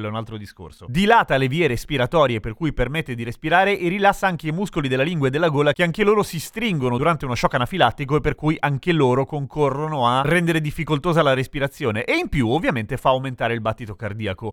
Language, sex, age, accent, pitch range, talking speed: Italian, male, 30-49, native, 120-165 Hz, 215 wpm